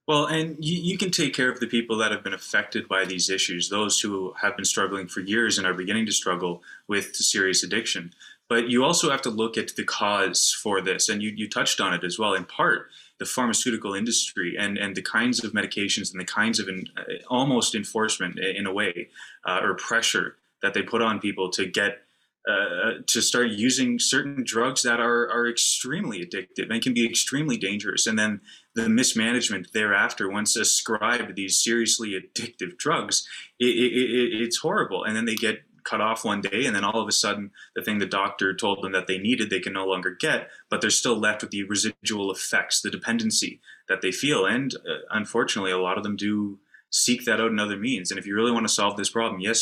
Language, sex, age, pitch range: English, male, 20-39, 95-120 Hz